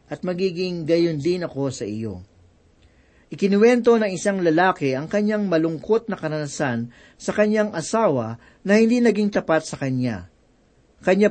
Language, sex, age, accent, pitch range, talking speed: Filipino, male, 50-69, native, 150-205 Hz, 140 wpm